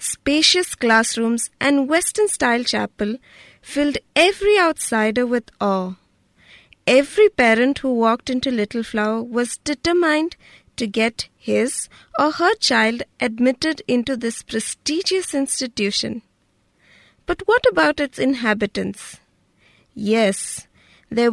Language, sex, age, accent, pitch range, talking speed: English, female, 20-39, Indian, 220-290 Hz, 105 wpm